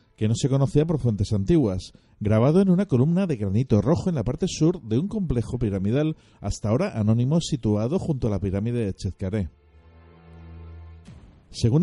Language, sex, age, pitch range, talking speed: Spanish, male, 50-69, 105-150 Hz, 165 wpm